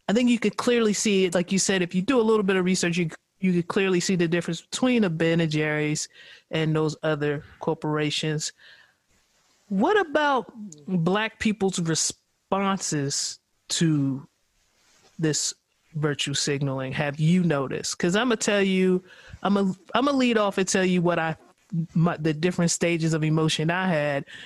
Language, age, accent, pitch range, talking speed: English, 30-49, American, 150-185 Hz, 170 wpm